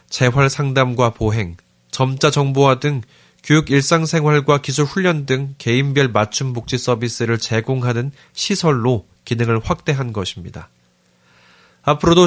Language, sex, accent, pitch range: Korean, male, native, 115-150 Hz